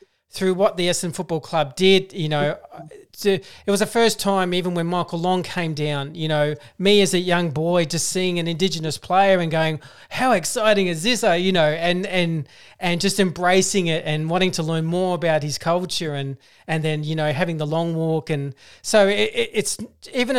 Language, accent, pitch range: English, Australian, 165-195 Hz